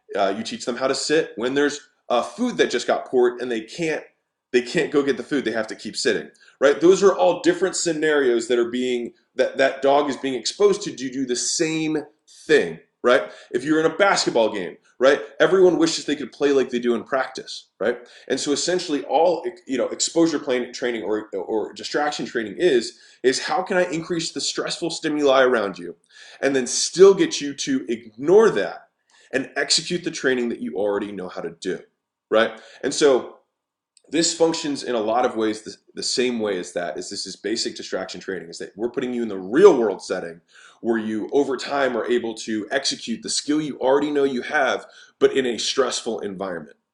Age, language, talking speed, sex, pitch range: 20-39, English, 210 wpm, male, 125-180 Hz